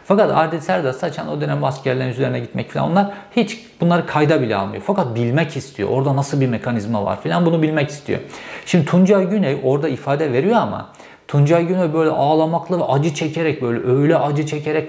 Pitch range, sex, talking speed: 125-160 Hz, male, 185 wpm